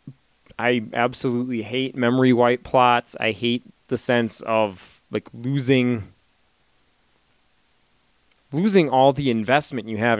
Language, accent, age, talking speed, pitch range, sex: English, American, 30-49, 110 wpm, 110-125 Hz, male